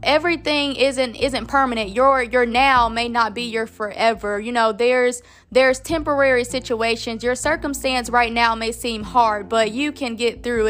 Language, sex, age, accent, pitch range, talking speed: English, female, 20-39, American, 225-270 Hz, 170 wpm